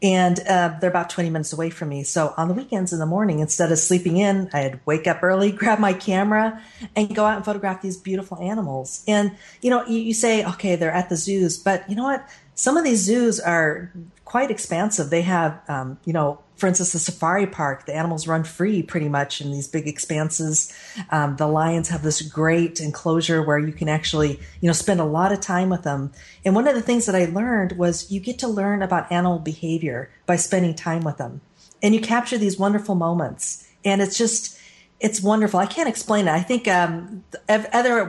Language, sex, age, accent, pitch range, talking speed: English, female, 40-59, American, 165-200 Hz, 215 wpm